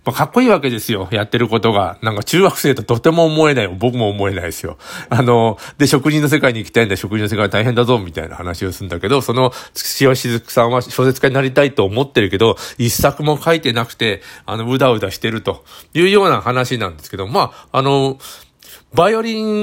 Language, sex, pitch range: Japanese, male, 105-145 Hz